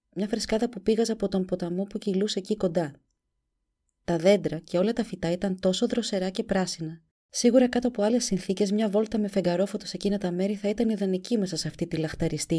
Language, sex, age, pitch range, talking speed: Greek, female, 30-49, 165-210 Hz, 205 wpm